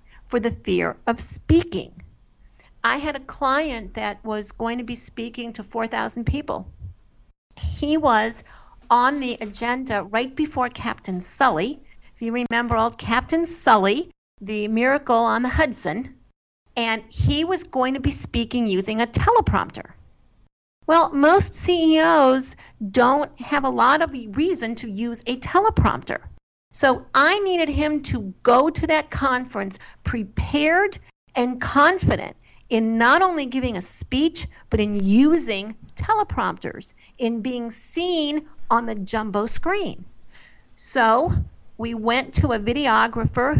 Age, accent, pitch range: 50-69, American, 225-305 Hz